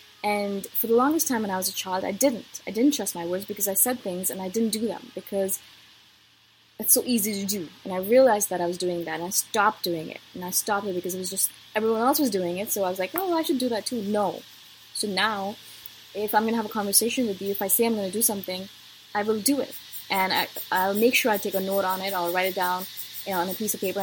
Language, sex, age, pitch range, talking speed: English, female, 20-39, 185-225 Hz, 285 wpm